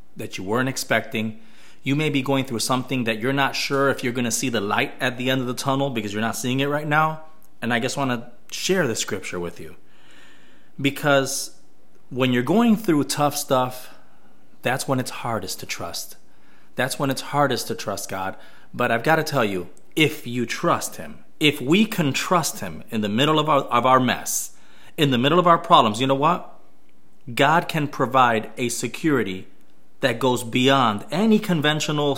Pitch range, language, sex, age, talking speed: 120-150 Hz, English, male, 30-49, 195 wpm